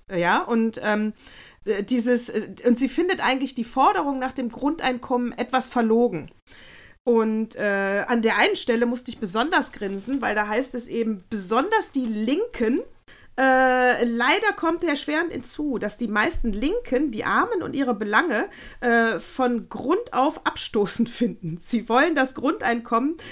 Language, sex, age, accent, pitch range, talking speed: German, female, 40-59, German, 220-285 Hz, 150 wpm